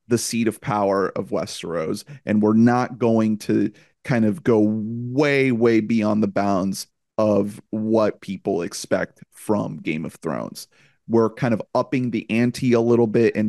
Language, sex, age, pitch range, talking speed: English, male, 30-49, 110-135 Hz, 165 wpm